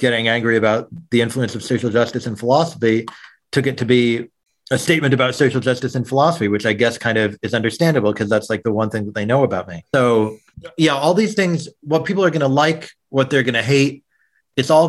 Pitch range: 110-135 Hz